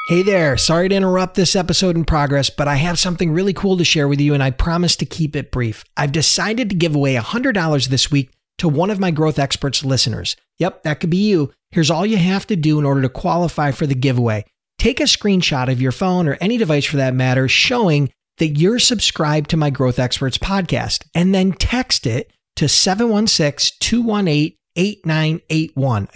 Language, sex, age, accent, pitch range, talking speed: English, male, 40-59, American, 145-190 Hz, 195 wpm